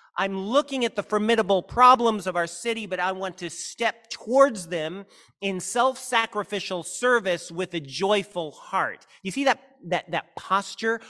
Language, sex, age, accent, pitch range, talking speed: English, male, 40-59, American, 170-225 Hz, 155 wpm